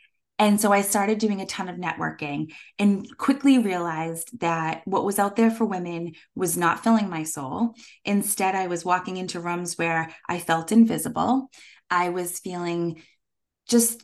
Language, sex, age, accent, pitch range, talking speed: English, female, 20-39, American, 175-240 Hz, 160 wpm